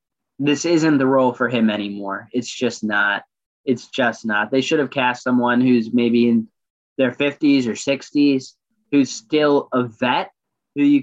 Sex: male